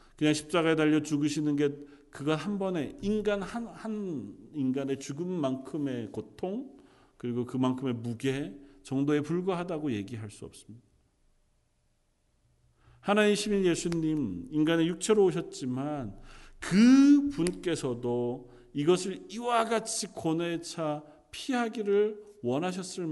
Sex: male